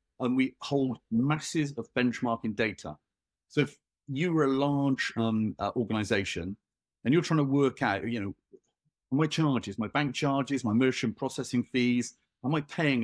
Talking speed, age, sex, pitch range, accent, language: 165 wpm, 40-59, male, 115-140 Hz, British, English